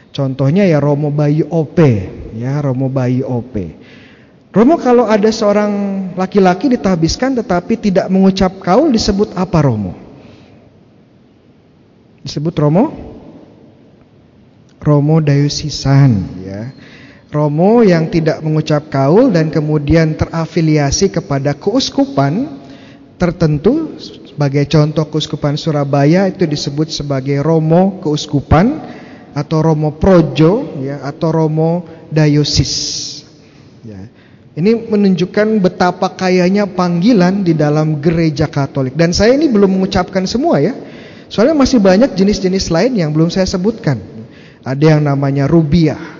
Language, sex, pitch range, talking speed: Indonesian, male, 145-180 Hz, 110 wpm